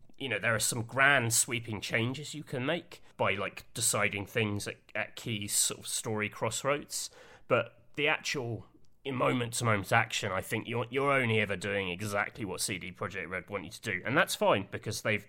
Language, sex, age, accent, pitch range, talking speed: English, male, 30-49, British, 105-135 Hz, 190 wpm